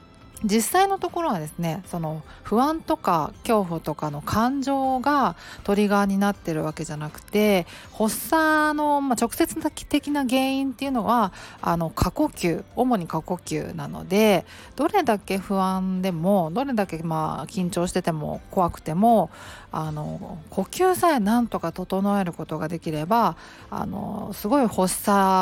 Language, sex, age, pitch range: Japanese, female, 40-59, 170-235 Hz